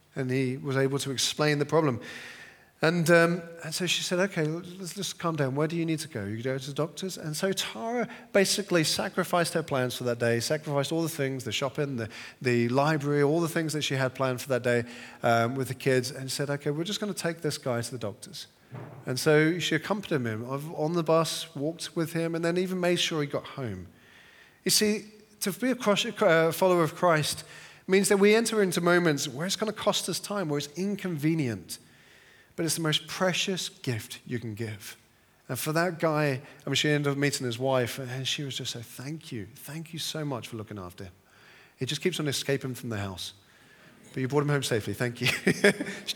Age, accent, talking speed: 40-59, British, 230 wpm